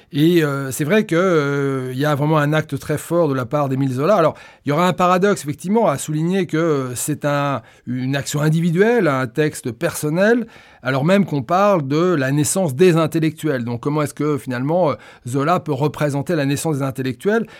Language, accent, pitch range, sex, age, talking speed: French, French, 145-185 Hz, male, 30-49, 200 wpm